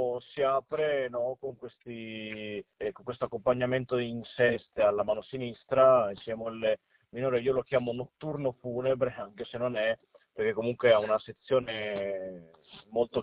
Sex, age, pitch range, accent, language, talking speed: male, 40-59, 115-135 Hz, native, Italian, 150 wpm